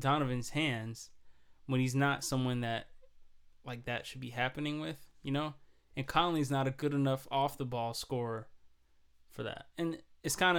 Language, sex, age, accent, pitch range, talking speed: English, male, 20-39, American, 125-155 Hz, 170 wpm